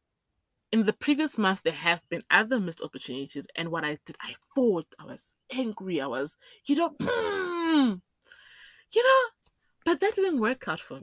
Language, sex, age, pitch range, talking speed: English, female, 20-39, 165-255 Hz, 170 wpm